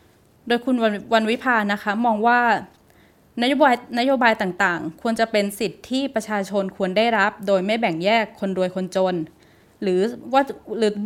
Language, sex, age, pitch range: Thai, female, 20-39, 190-235 Hz